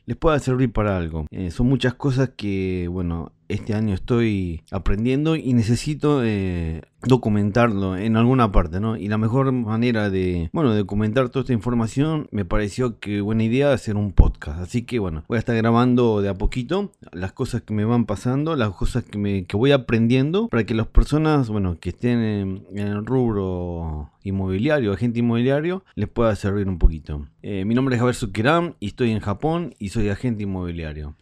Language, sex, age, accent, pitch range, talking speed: Spanish, male, 30-49, Argentinian, 100-125 Hz, 185 wpm